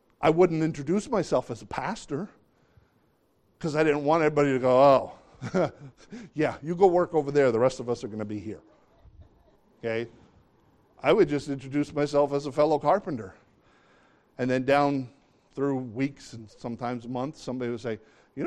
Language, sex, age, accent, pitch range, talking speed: English, male, 50-69, American, 125-155 Hz, 170 wpm